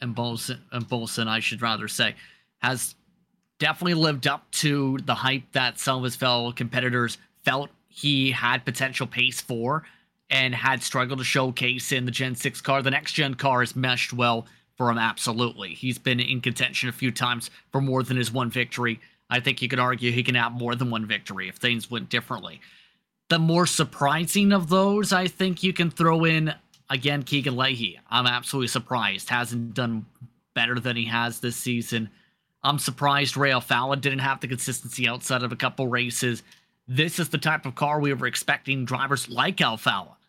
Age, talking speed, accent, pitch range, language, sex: 30-49, 185 wpm, American, 125-140 Hz, English, male